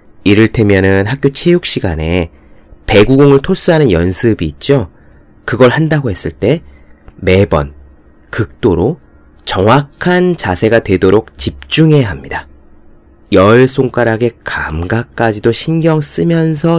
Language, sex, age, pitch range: Korean, male, 30-49, 85-130 Hz